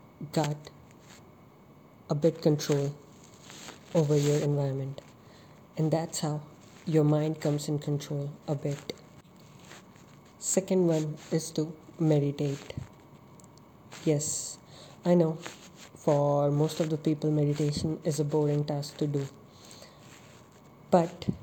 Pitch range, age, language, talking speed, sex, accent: 145-160 Hz, 20-39, English, 105 wpm, female, Indian